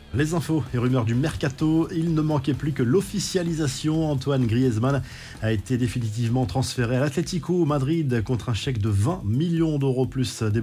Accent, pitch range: French, 115-150 Hz